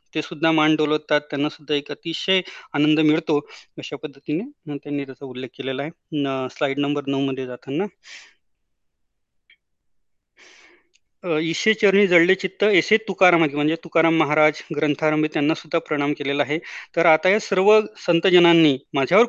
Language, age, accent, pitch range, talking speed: Marathi, 30-49, native, 145-195 Hz, 85 wpm